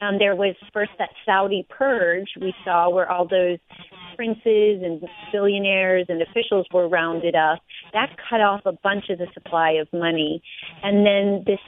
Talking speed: 170 wpm